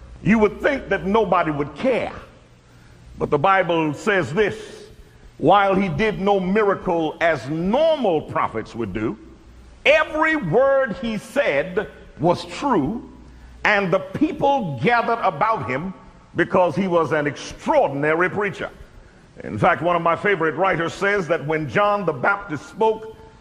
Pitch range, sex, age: 170-240 Hz, male, 50-69